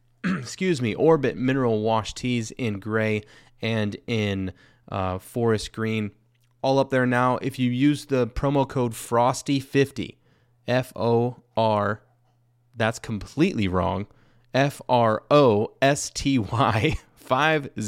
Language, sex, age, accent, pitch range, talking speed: English, male, 30-49, American, 105-130 Hz, 95 wpm